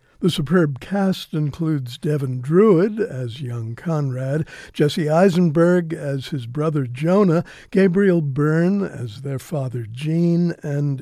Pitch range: 135-175 Hz